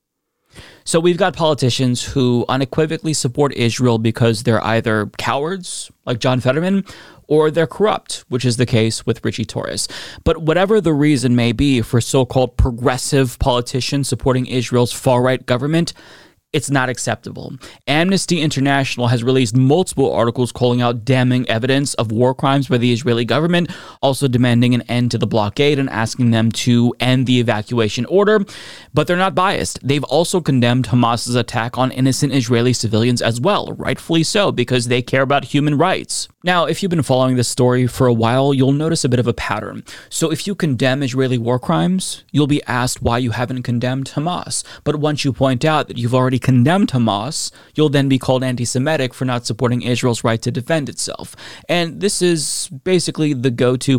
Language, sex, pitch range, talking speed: English, male, 120-150 Hz, 175 wpm